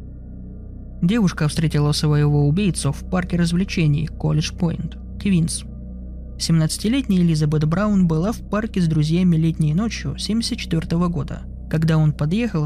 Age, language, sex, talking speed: 20-39, Russian, male, 120 wpm